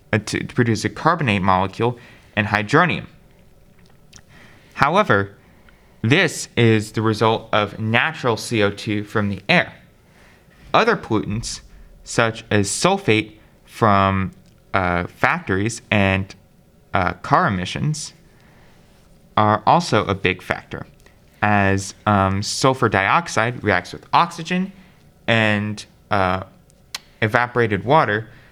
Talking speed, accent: 95 wpm, American